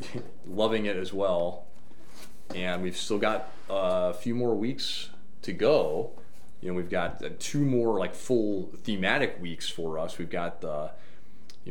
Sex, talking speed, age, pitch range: male, 165 wpm, 30-49, 90-120 Hz